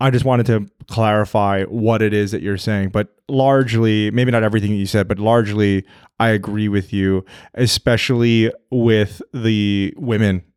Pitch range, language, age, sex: 100-120 Hz, English, 20-39, male